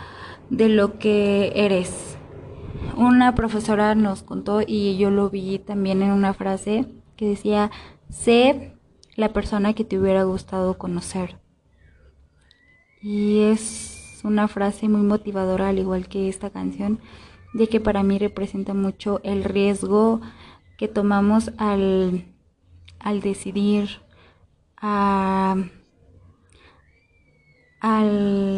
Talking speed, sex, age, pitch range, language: 105 wpm, female, 20-39, 190-215 Hz, Spanish